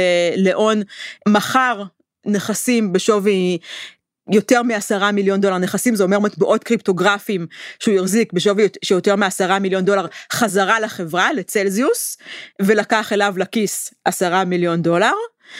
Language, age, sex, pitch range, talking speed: Hebrew, 30-49, female, 190-245 Hz, 110 wpm